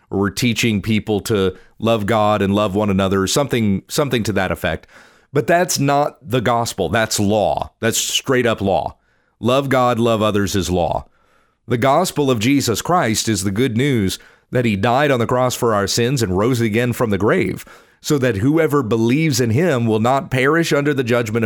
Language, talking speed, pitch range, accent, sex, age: English, 195 wpm, 110-140 Hz, American, male, 40-59